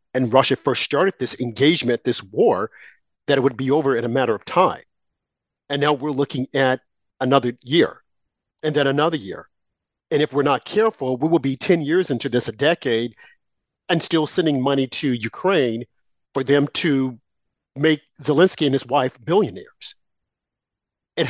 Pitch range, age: 135-190 Hz, 50-69